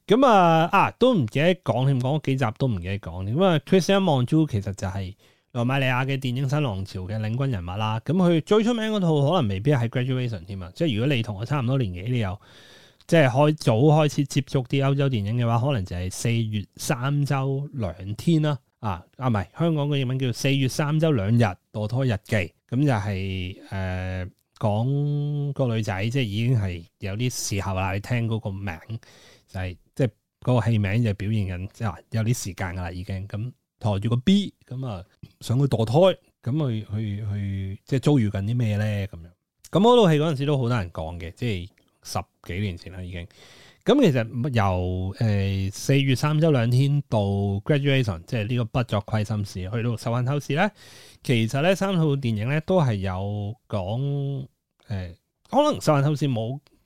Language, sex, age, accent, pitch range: Chinese, male, 20-39, native, 100-140 Hz